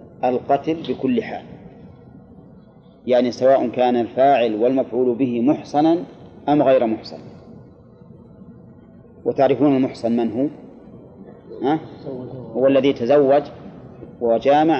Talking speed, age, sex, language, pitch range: 95 wpm, 30-49, male, Arabic, 120-140 Hz